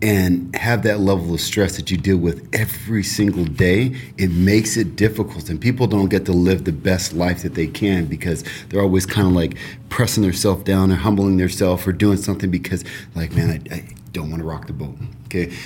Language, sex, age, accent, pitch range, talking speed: English, male, 40-59, American, 90-110 Hz, 215 wpm